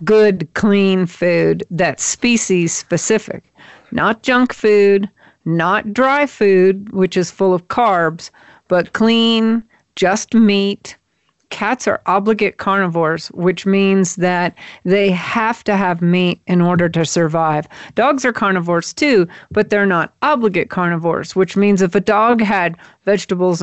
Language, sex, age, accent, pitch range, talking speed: English, female, 50-69, American, 180-220 Hz, 130 wpm